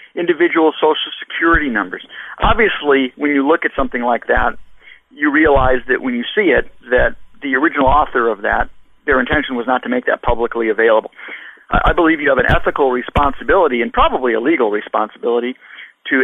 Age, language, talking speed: 50-69, English, 175 wpm